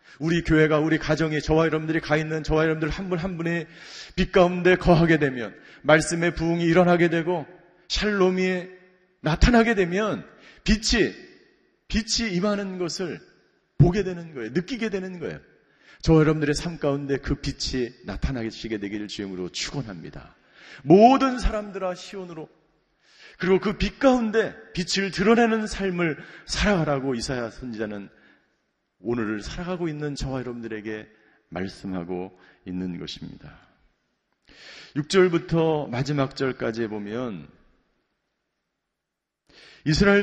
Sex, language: male, Korean